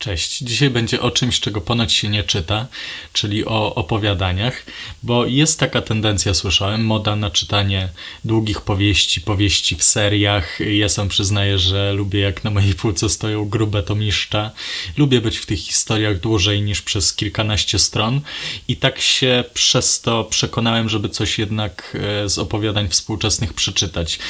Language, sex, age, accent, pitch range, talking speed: Polish, male, 20-39, native, 105-120 Hz, 155 wpm